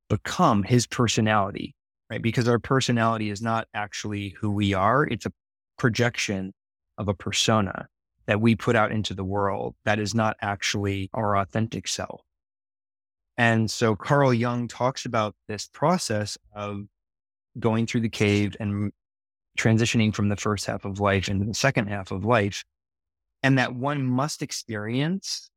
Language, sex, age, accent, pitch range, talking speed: English, male, 20-39, American, 100-115 Hz, 155 wpm